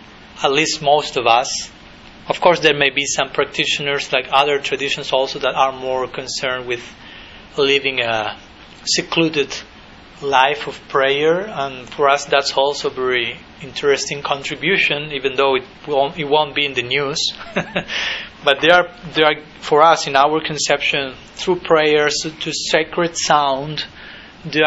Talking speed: 145 wpm